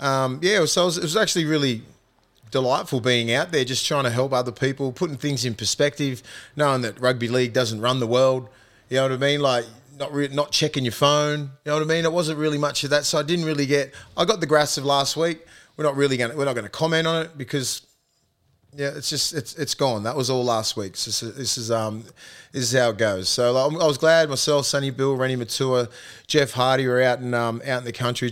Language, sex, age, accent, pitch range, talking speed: English, male, 30-49, Australian, 115-140 Hz, 255 wpm